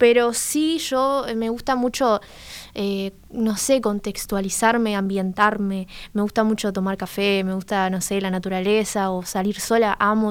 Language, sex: Spanish, female